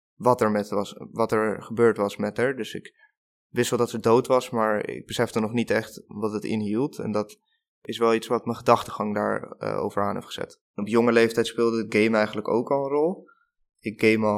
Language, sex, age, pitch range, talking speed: Dutch, male, 20-39, 105-120 Hz, 230 wpm